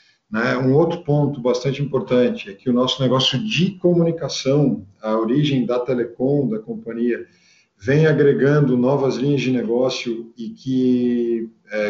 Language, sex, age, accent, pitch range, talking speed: Portuguese, male, 50-69, Brazilian, 120-150 Hz, 135 wpm